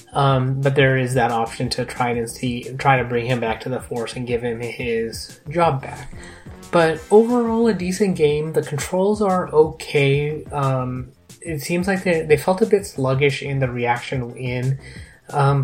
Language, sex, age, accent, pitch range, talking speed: English, male, 20-39, American, 125-145 Hz, 185 wpm